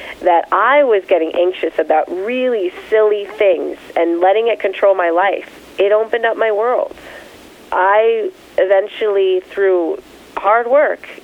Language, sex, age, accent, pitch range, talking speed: English, female, 30-49, American, 190-270 Hz, 135 wpm